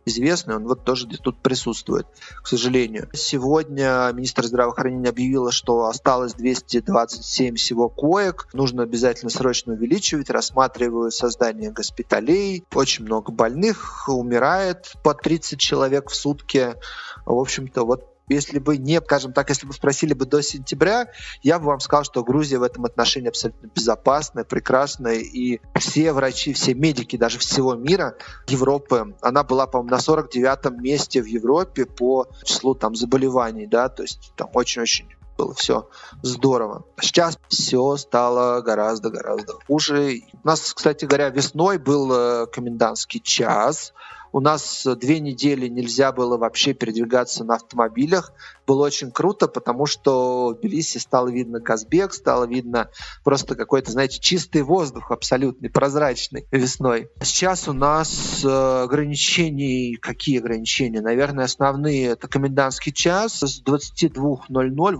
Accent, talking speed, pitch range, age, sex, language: native, 135 wpm, 120-145 Hz, 30-49, male, Russian